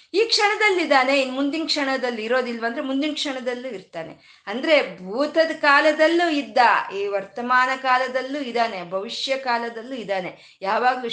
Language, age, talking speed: Kannada, 20-39, 120 wpm